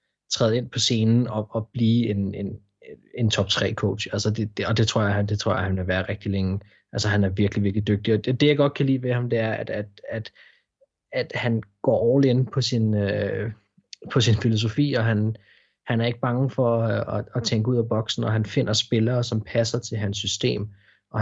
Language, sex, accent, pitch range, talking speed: Danish, male, native, 105-120 Hz, 225 wpm